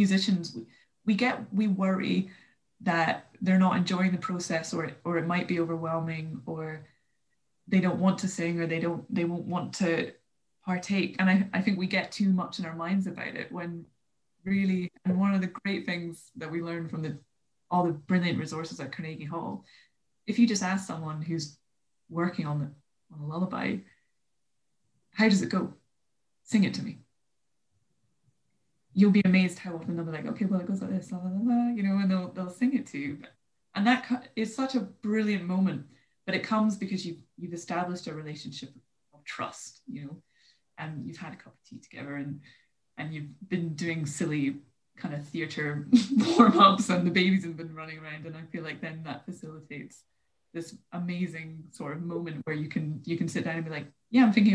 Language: English